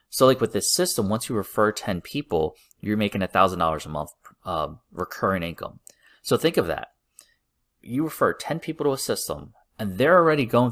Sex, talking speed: male, 190 wpm